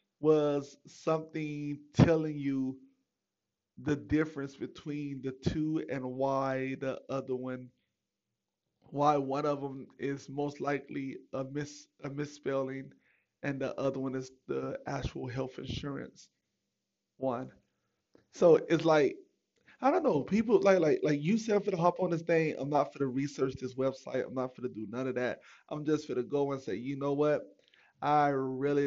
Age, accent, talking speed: 20-39, American, 165 wpm